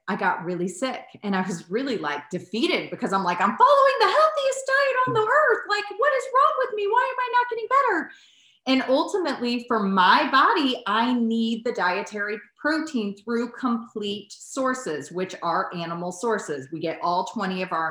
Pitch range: 175-240 Hz